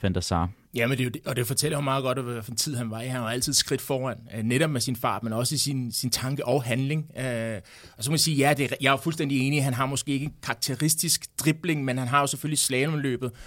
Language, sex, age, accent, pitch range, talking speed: Danish, male, 30-49, native, 130-155 Hz, 250 wpm